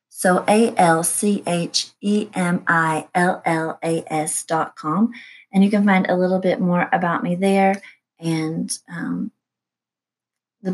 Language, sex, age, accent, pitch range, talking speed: English, female, 30-49, American, 170-210 Hz, 100 wpm